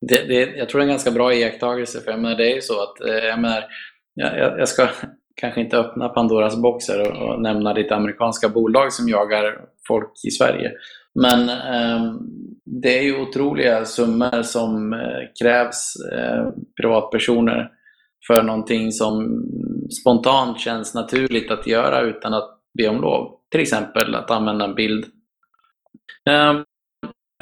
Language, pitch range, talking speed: Swedish, 110-130 Hz, 155 wpm